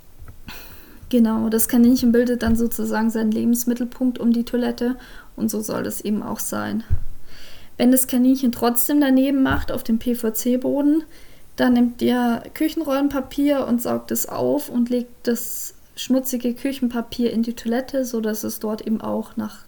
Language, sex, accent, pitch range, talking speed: German, female, German, 220-245 Hz, 150 wpm